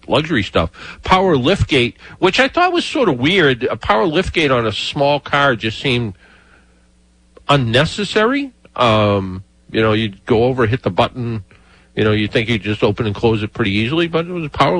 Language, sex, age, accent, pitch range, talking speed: English, male, 50-69, American, 105-140 Hz, 195 wpm